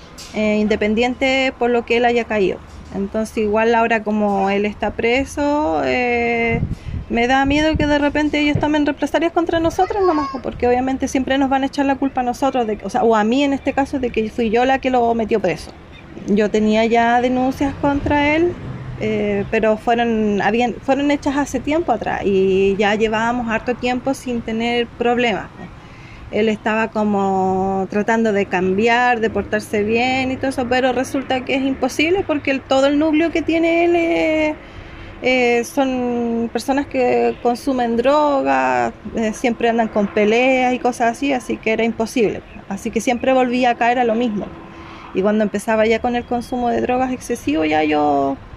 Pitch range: 215-270 Hz